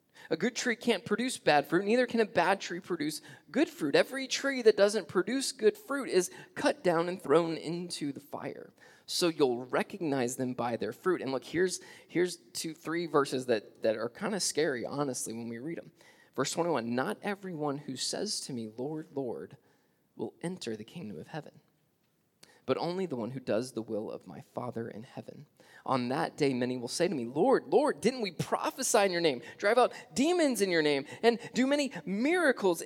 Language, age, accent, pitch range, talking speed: English, 20-39, American, 130-200 Hz, 200 wpm